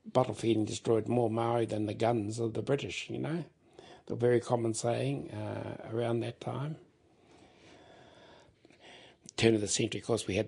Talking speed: 165 wpm